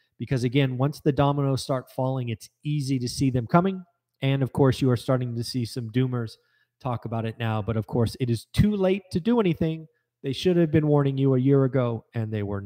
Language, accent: English, American